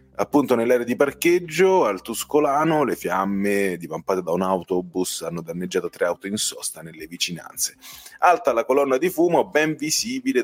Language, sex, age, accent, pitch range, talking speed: Italian, male, 30-49, native, 95-145 Hz, 155 wpm